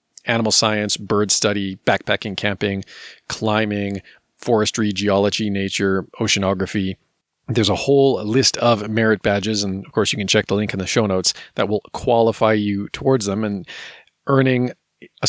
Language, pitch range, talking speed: English, 105-135 Hz, 155 wpm